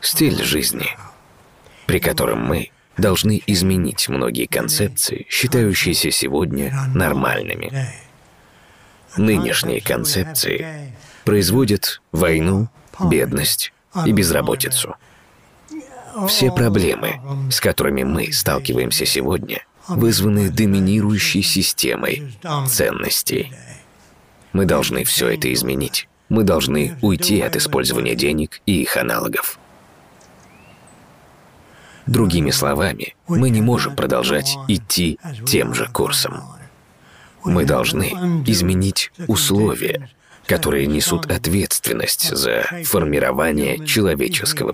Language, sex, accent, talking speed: Russian, male, native, 85 wpm